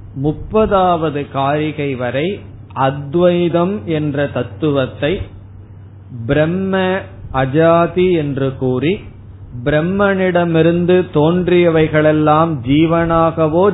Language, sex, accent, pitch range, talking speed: Tamil, male, native, 120-155 Hz, 55 wpm